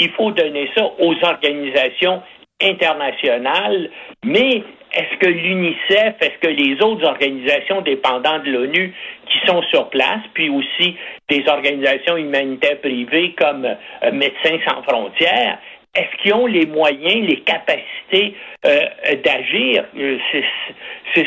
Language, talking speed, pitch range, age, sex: French, 125 wpm, 155-255 Hz, 60-79, male